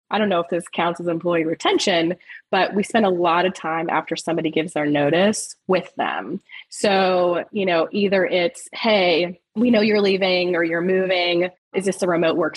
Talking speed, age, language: 195 wpm, 20-39, English